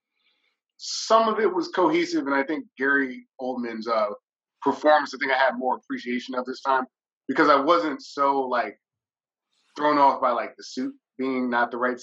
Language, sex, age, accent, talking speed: English, male, 20-39, American, 180 wpm